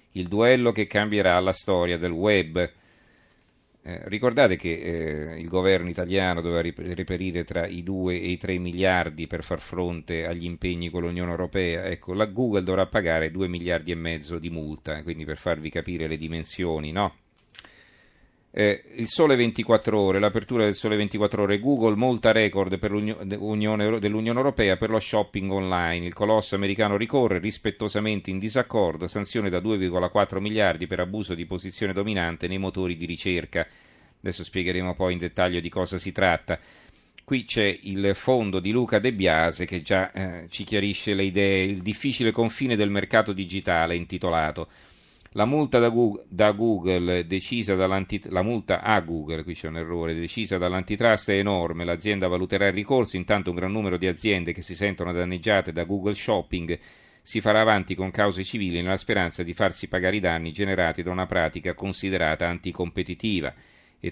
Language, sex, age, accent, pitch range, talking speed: Italian, male, 40-59, native, 90-105 Hz, 165 wpm